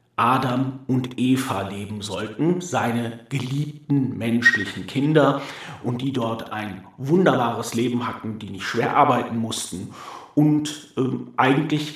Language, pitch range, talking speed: German, 115-145 Hz, 120 wpm